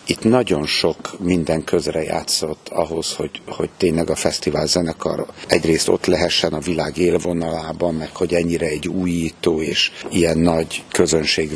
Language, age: Hungarian, 60-79